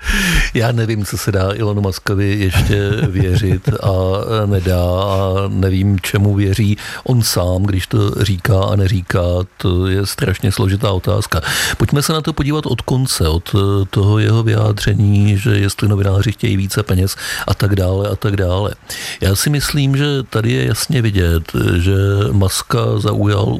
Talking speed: 155 wpm